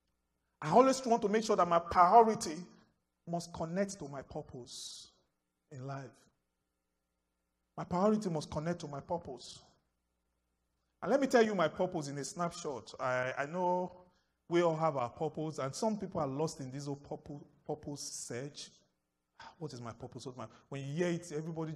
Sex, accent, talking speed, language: male, Nigerian, 175 wpm, English